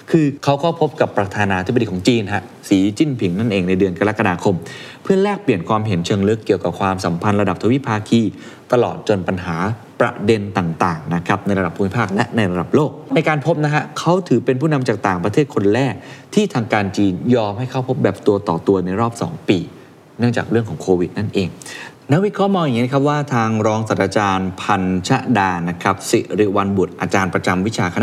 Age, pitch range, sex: 20-39, 95-130 Hz, male